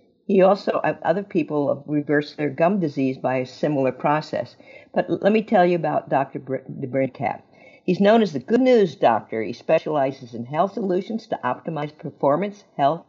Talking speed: 175 wpm